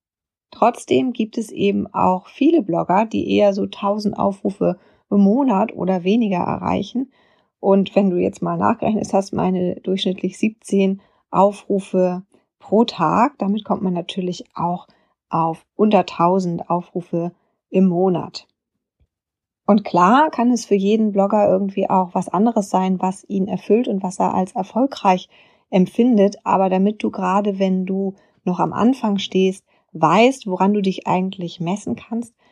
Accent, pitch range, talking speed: German, 180-215 Hz, 145 wpm